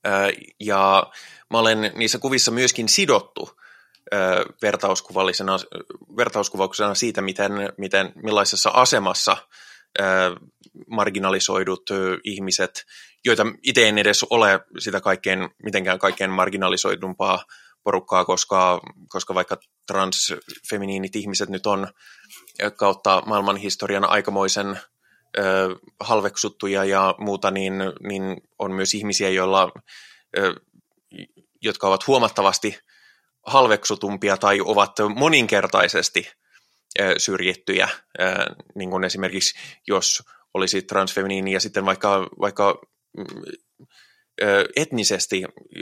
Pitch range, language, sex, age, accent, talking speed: 95-100 Hz, Finnish, male, 20-39, native, 85 wpm